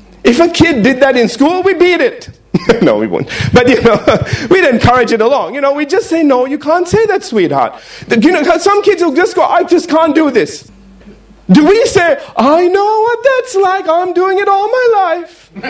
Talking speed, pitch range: 220 wpm, 215-350 Hz